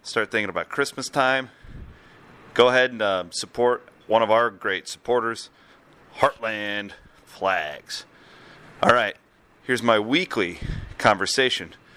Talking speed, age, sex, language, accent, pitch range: 115 wpm, 30-49, male, English, American, 100-125 Hz